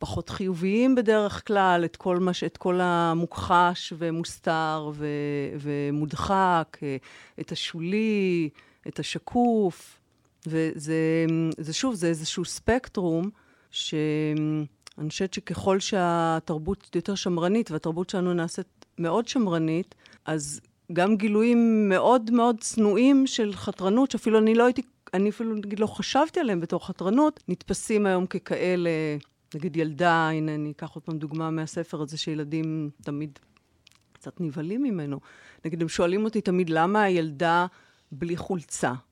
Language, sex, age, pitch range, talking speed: Hebrew, female, 40-59, 160-205 Hz, 125 wpm